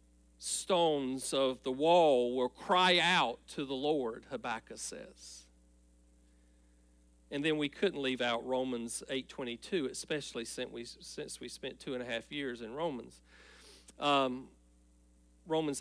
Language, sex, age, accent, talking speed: English, male, 40-59, American, 135 wpm